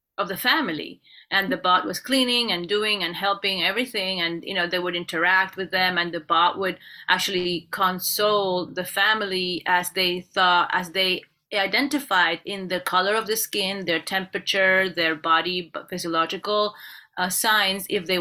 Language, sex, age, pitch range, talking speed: English, female, 30-49, 175-205 Hz, 165 wpm